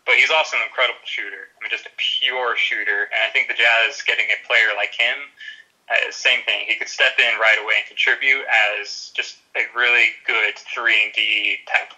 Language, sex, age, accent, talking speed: English, male, 20-39, American, 200 wpm